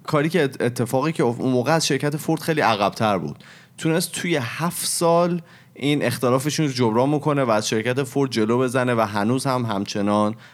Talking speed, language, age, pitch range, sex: 175 wpm, Persian, 30-49, 105-135 Hz, male